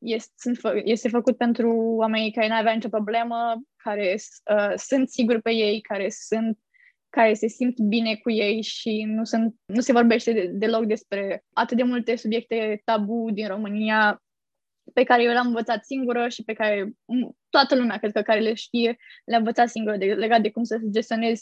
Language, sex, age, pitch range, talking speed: Romanian, female, 10-29, 215-235 Hz, 170 wpm